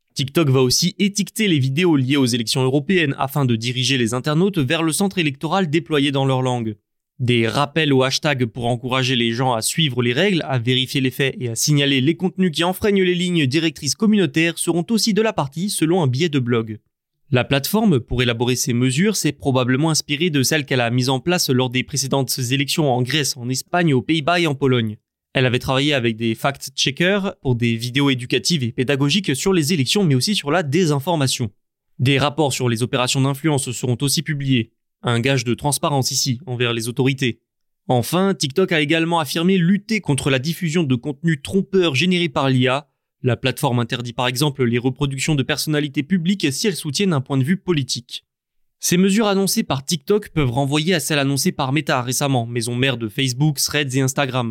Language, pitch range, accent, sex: French, 125-165 Hz, French, male